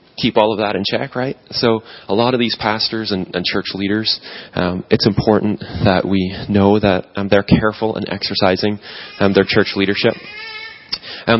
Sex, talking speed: male, 180 wpm